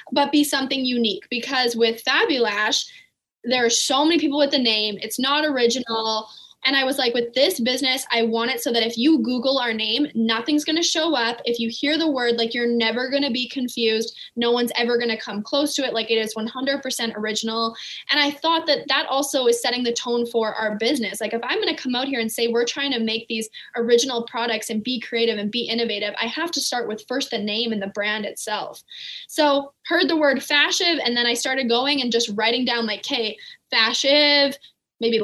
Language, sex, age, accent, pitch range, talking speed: English, female, 10-29, American, 230-280 Hz, 225 wpm